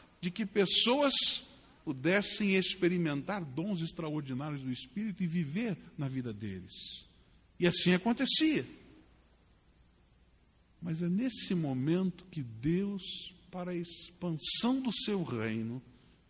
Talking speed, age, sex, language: 105 wpm, 60-79, male, English